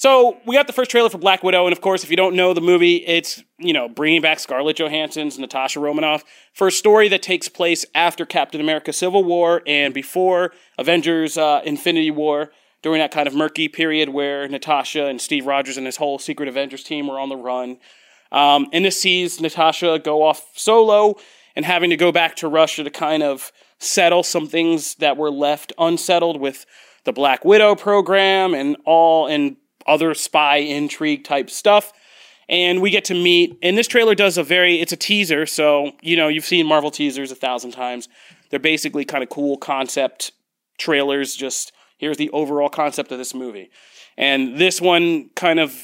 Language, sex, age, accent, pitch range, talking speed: English, male, 30-49, American, 145-180 Hz, 190 wpm